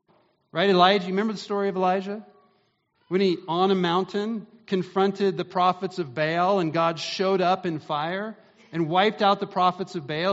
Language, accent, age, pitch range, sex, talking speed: English, American, 40-59, 130-195 Hz, male, 180 wpm